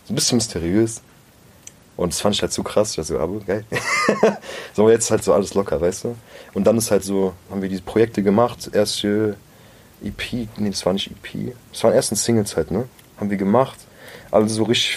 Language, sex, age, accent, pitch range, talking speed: German, male, 30-49, German, 100-115 Hz, 215 wpm